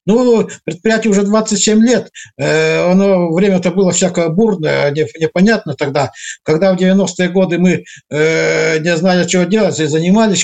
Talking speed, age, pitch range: 145 wpm, 60-79, 155-190 Hz